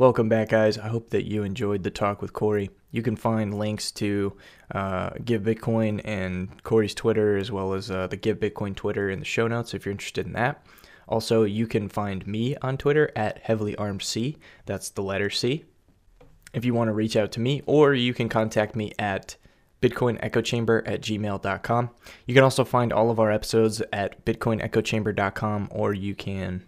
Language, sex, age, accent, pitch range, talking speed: English, male, 20-39, American, 100-115 Hz, 180 wpm